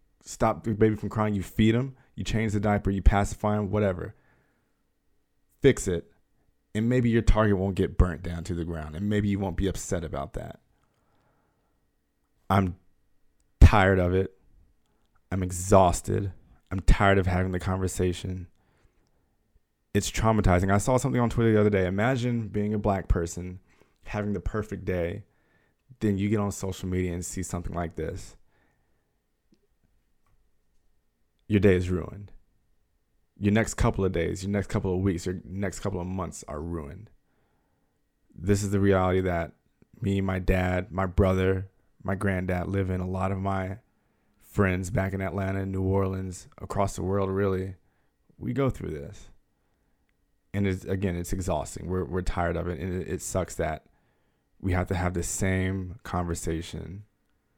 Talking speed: 160 wpm